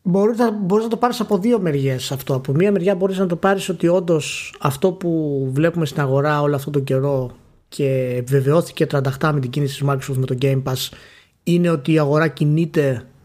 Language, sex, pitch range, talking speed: Greek, male, 135-185 Hz, 195 wpm